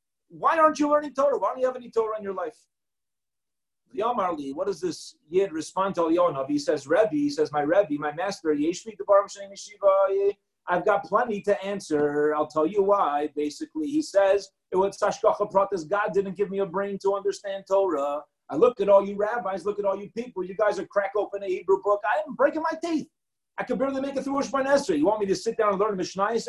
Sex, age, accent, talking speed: male, 30-49, American, 220 wpm